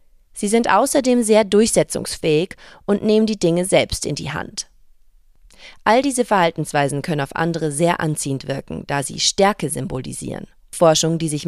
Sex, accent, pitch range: female, German, 155-220 Hz